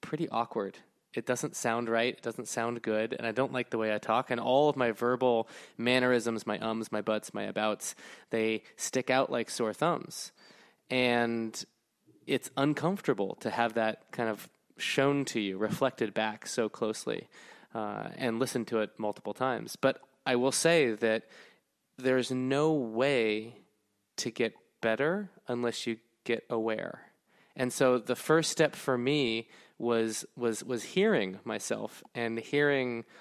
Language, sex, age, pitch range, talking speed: English, male, 20-39, 110-130 Hz, 155 wpm